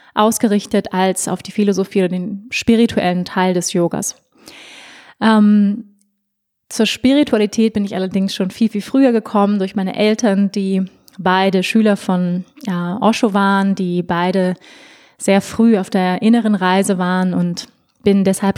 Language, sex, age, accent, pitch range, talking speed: German, female, 20-39, German, 190-220 Hz, 140 wpm